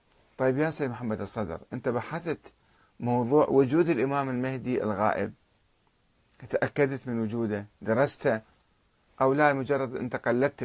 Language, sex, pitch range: Arabic, male, 105-140 Hz